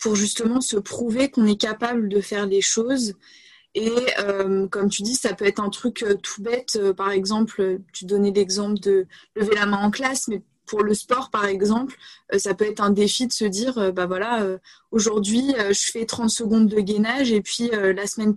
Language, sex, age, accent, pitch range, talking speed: French, female, 20-39, French, 205-245 Hz, 225 wpm